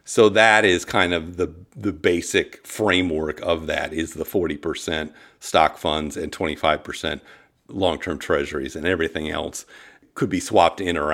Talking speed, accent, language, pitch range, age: 150 wpm, American, English, 85-105 Hz, 50-69